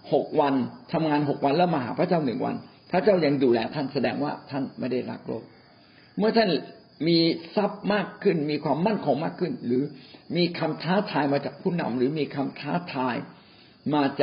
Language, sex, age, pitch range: Thai, male, 60-79, 140-195 Hz